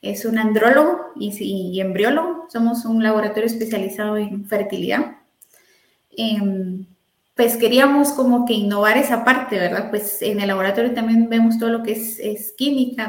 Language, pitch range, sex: Spanish, 210-245 Hz, female